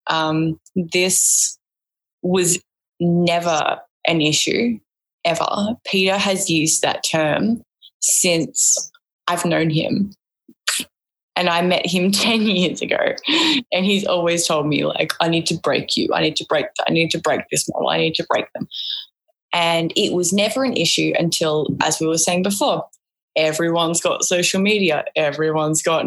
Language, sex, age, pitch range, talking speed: English, female, 10-29, 160-190 Hz, 155 wpm